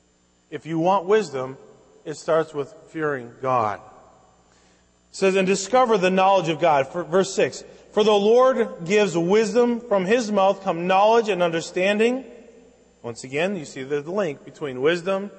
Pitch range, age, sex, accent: 170-225 Hz, 30-49, male, American